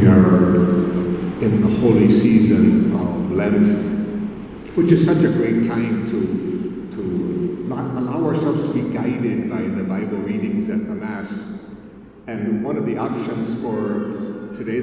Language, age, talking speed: English, 50-69, 145 wpm